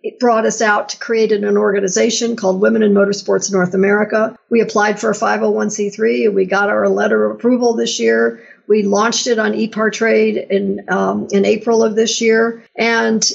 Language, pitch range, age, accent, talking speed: English, 210-260 Hz, 60-79, American, 180 wpm